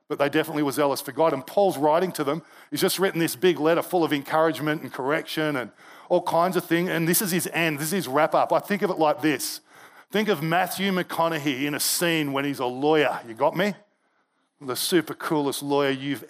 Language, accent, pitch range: English, Australian, 155-190 Hz